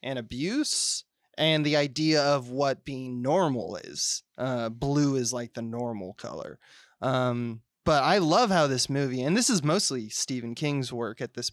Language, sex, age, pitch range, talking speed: English, male, 20-39, 130-160 Hz, 170 wpm